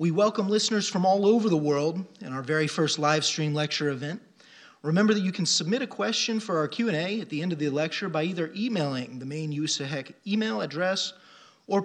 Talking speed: 210 wpm